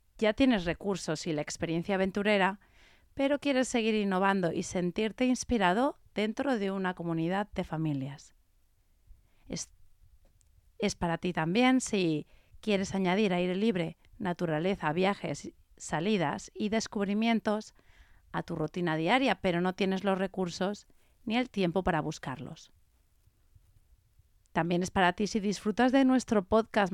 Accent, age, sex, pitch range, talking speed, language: Spanish, 30-49, female, 150-200 Hz, 130 wpm, Spanish